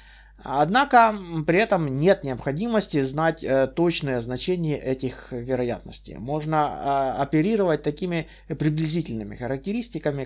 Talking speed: 100 wpm